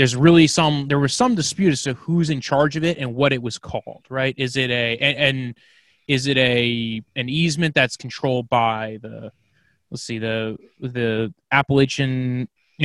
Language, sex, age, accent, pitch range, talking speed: English, male, 20-39, American, 120-145 Hz, 180 wpm